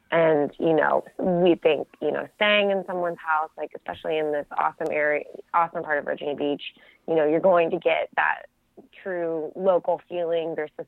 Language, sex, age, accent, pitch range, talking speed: English, female, 20-39, American, 155-195 Hz, 190 wpm